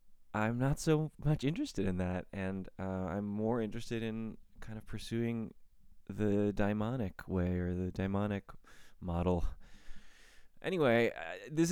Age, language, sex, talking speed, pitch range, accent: 20-39, English, male, 135 wpm, 95-120 Hz, American